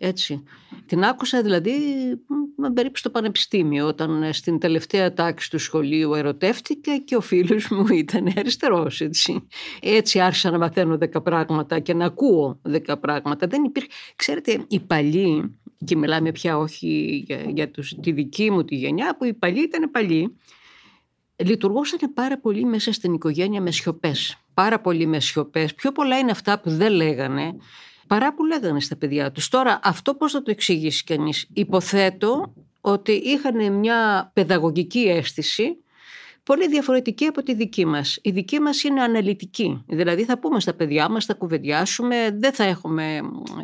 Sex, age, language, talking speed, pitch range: female, 50-69, Greek, 150 wpm, 160-235 Hz